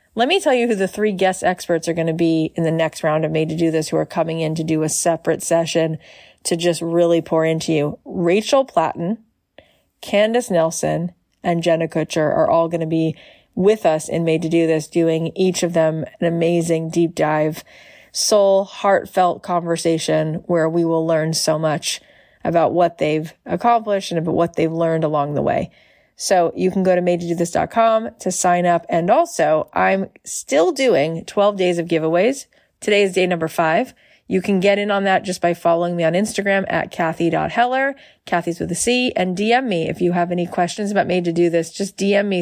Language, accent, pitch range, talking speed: English, American, 165-195 Hz, 205 wpm